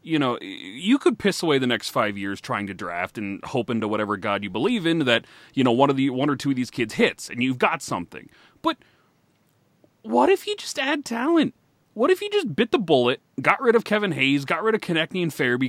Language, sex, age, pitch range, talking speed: English, male, 30-49, 150-255 Hz, 240 wpm